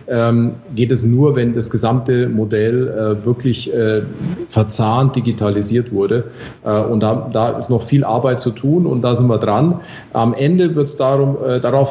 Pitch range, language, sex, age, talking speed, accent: 110-130 Hz, German, male, 40-59, 170 wpm, German